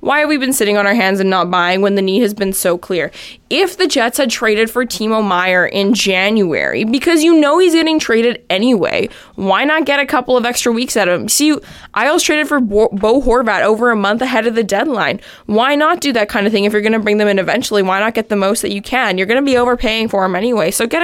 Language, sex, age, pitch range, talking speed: English, female, 20-39, 195-270 Hz, 265 wpm